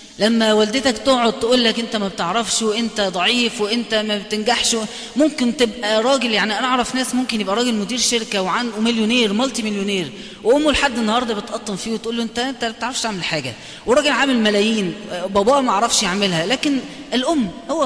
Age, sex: 20-39, female